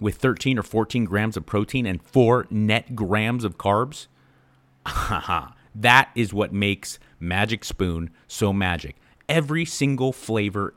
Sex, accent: male, American